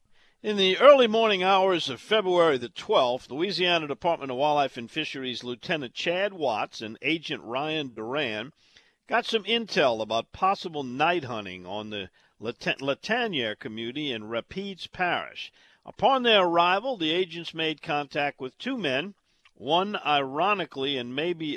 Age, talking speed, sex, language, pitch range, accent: 50-69, 140 wpm, male, English, 130-175 Hz, American